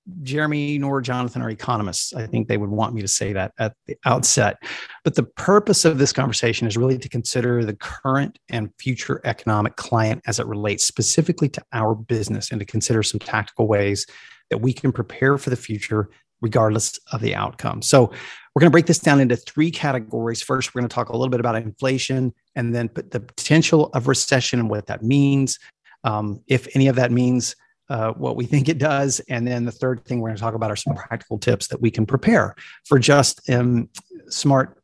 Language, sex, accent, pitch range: English, male, American, 110-135 Hz